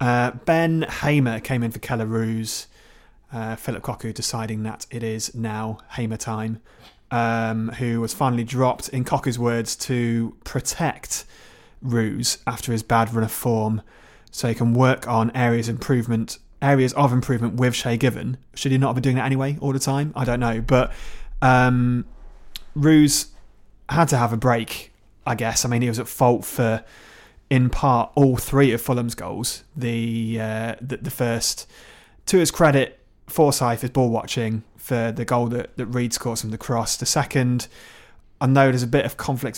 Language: English